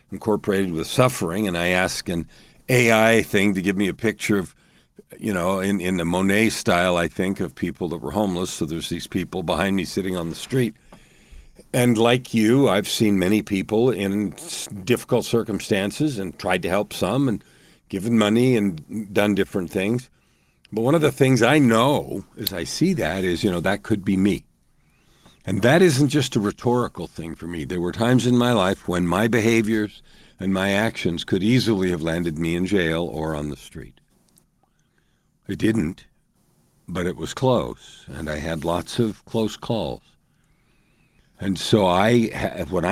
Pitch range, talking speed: 90-115 Hz, 180 wpm